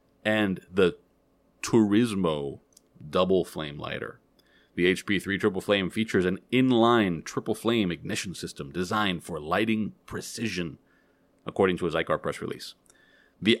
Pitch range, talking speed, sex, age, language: 90-110 Hz, 125 wpm, male, 30-49, English